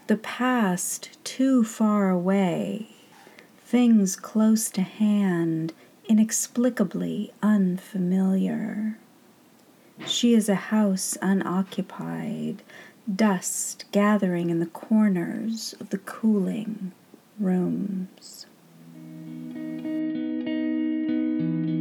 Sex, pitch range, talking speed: female, 175-220 Hz, 70 wpm